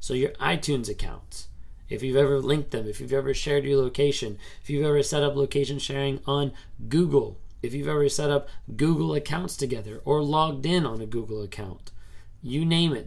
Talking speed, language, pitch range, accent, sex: 195 wpm, English, 110-140 Hz, American, male